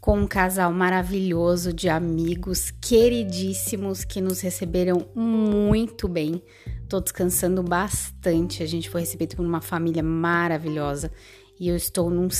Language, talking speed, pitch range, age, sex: Portuguese, 130 wpm, 165-190 Hz, 20-39, female